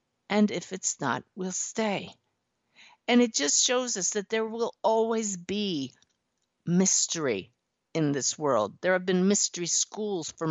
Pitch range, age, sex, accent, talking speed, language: 150-190 Hz, 50-69, female, American, 150 wpm, English